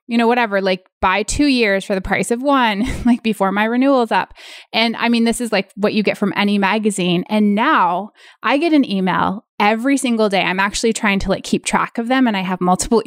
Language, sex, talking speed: English, female, 240 wpm